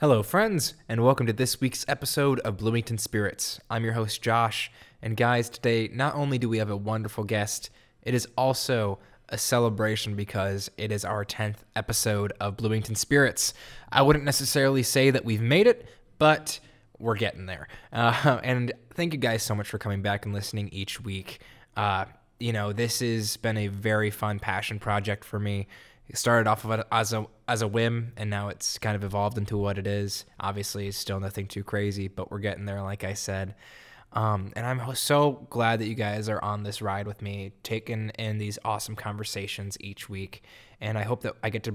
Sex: male